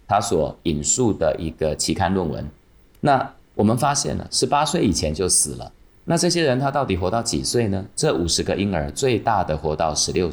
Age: 30-49